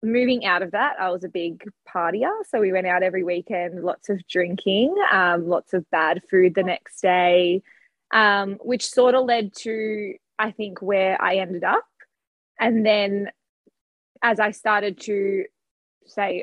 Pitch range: 185-220 Hz